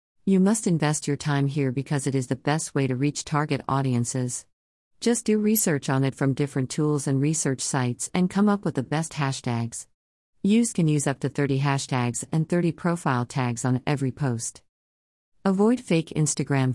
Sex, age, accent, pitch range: female, 50-69, American, 125-160 Hz